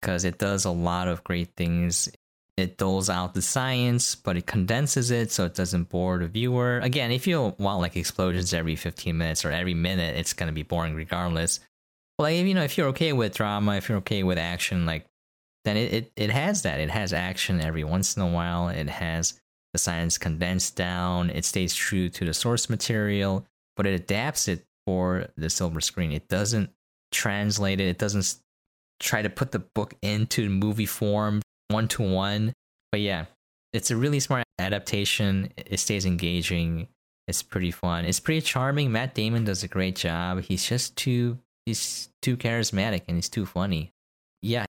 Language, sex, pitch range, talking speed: English, male, 90-115 Hz, 185 wpm